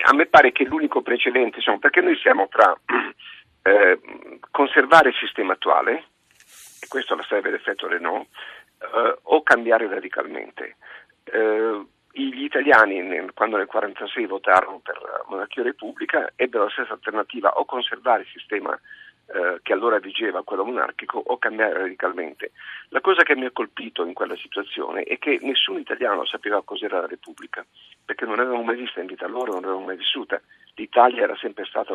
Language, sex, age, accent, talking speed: Italian, male, 50-69, native, 165 wpm